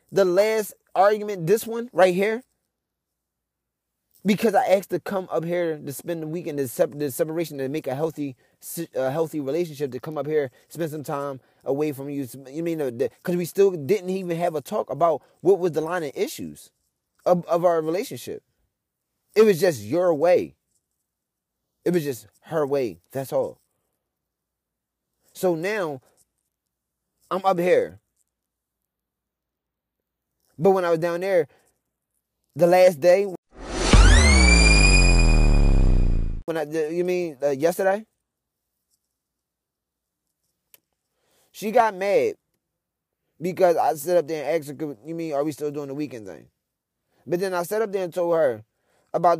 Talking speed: 145 wpm